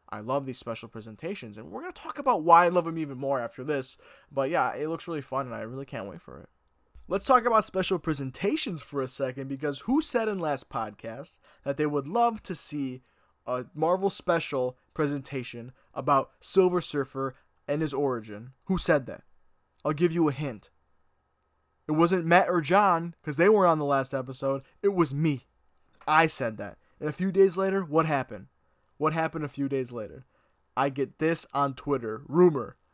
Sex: male